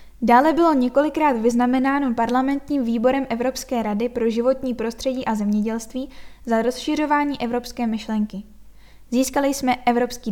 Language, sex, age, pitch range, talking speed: Czech, female, 10-29, 235-275 Hz, 115 wpm